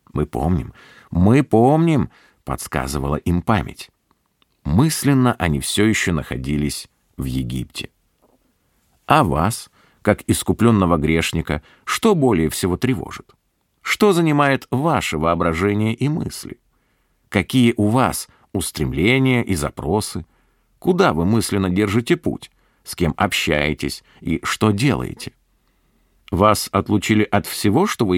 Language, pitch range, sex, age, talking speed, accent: Russian, 80-125 Hz, male, 50-69, 110 wpm, native